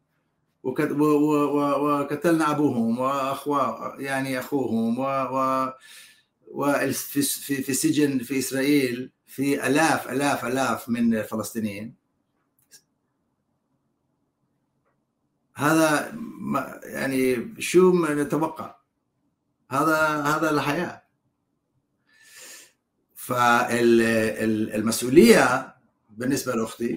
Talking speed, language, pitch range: 60 wpm, Arabic, 120-155 Hz